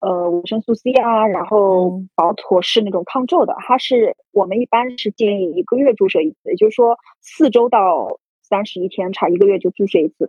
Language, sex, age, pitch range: Chinese, female, 30-49, 200-280 Hz